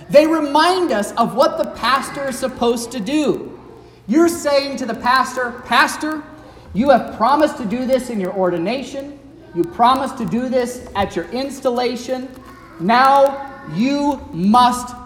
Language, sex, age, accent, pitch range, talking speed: English, male, 40-59, American, 185-260 Hz, 145 wpm